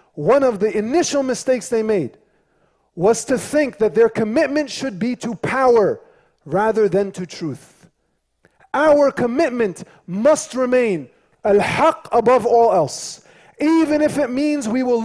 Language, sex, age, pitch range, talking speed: English, male, 30-49, 185-255 Hz, 140 wpm